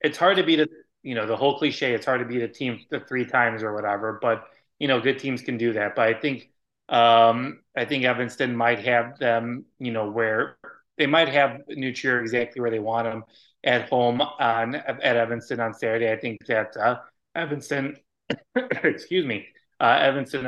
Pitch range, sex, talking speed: 115-145 Hz, male, 195 wpm